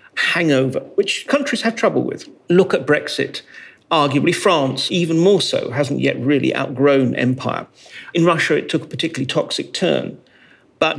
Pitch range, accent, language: 135-180 Hz, British, English